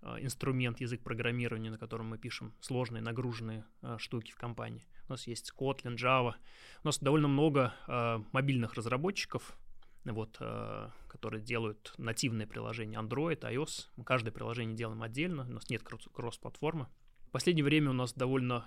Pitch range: 115-135 Hz